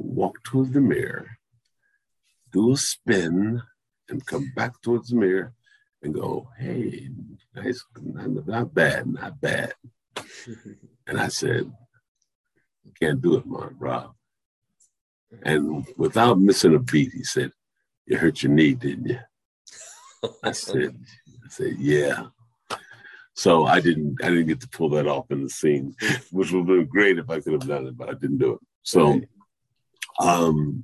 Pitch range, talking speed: 80-120 Hz, 155 wpm